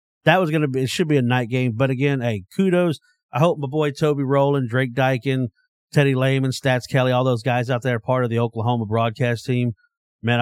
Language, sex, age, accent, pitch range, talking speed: English, male, 40-59, American, 105-145 Hz, 225 wpm